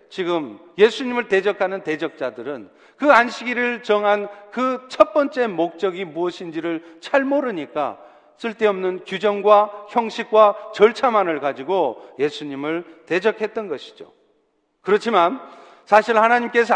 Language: Korean